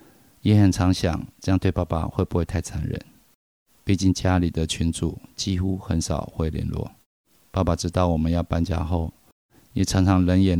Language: Chinese